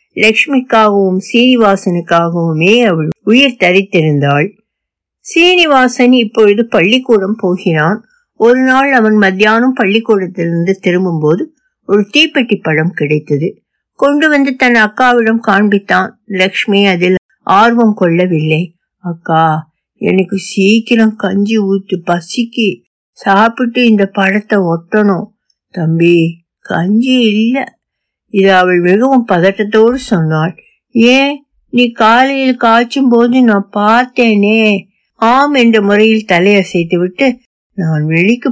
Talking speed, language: 80 wpm, Tamil